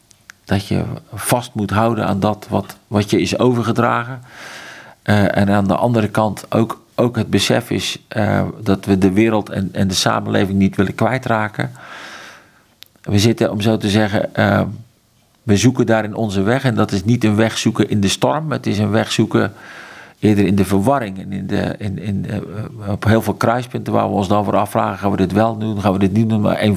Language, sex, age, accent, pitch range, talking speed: Dutch, male, 50-69, Dutch, 100-115 Hz, 195 wpm